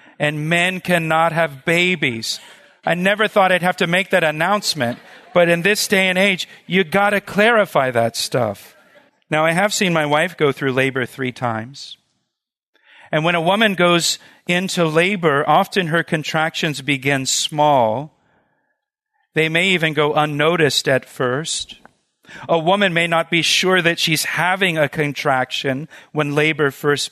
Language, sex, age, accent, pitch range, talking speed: English, male, 40-59, American, 150-190 Hz, 155 wpm